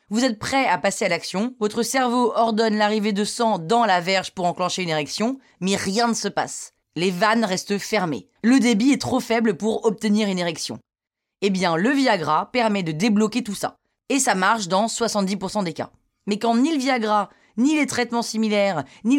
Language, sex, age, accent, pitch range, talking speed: French, female, 20-39, French, 180-235 Hz, 200 wpm